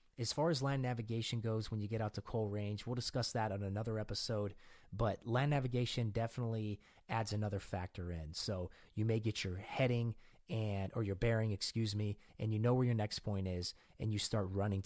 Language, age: English, 30-49